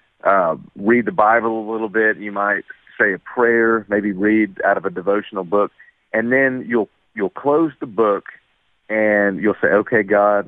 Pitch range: 95-120 Hz